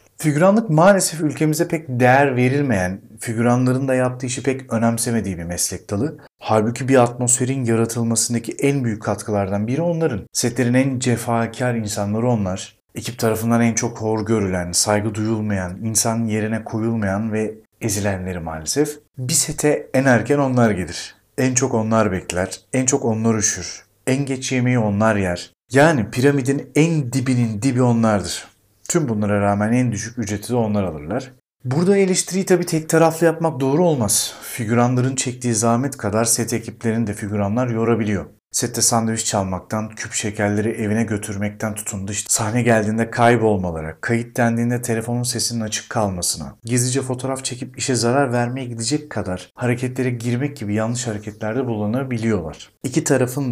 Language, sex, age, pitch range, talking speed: Turkish, male, 40-59, 105-130 Hz, 140 wpm